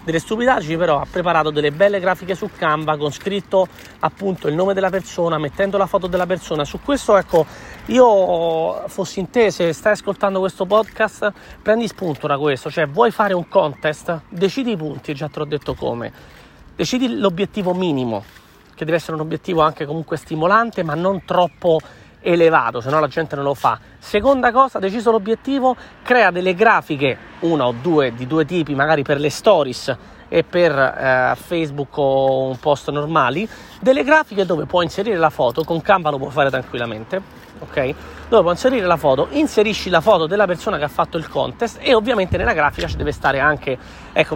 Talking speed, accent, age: 185 wpm, native, 30-49